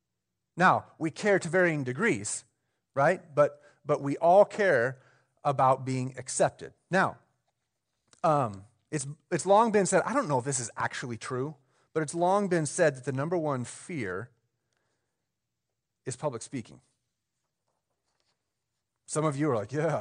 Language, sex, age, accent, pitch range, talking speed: English, male, 30-49, American, 130-180 Hz, 145 wpm